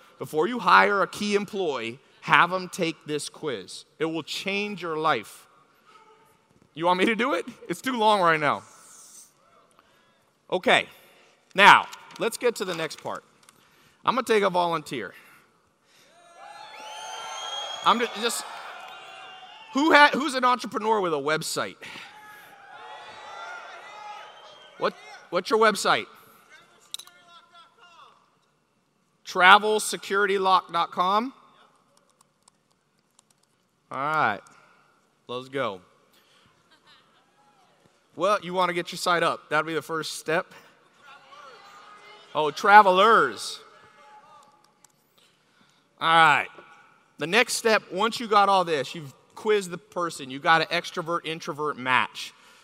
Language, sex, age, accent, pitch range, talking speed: English, male, 40-59, American, 175-275 Hz, 105 wpm